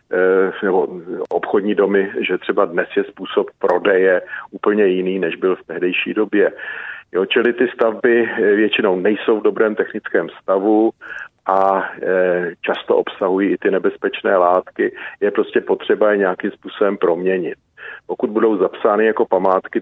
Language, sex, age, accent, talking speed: Czech, male, 40-59, native, 135 wpm